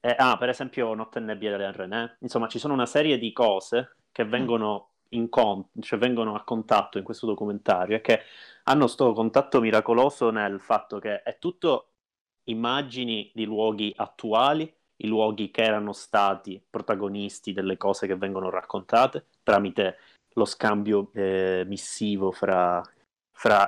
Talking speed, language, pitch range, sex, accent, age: 150 wpm, Italian, 100-115 Hz, male, native, 30-49